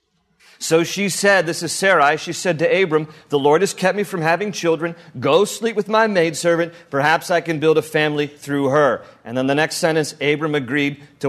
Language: English